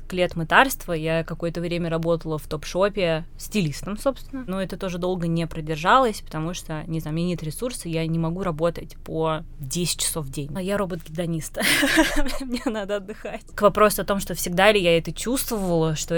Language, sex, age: Russian, female, 20-39